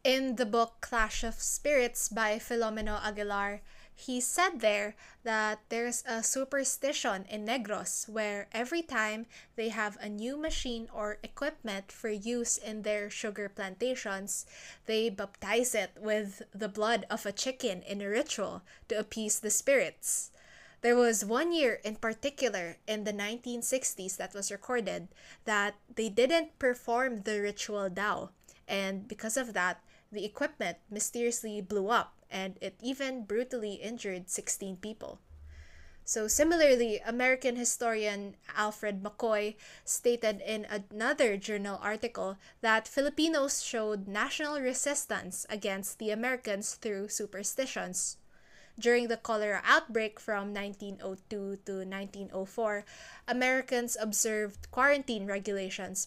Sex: female